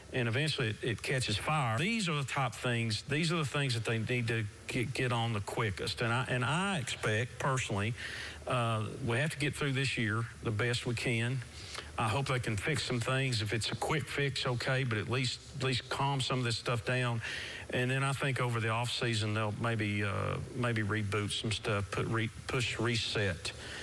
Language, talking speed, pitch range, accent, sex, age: English, 210 wpm, 110-130 Hz, American, male, 50-69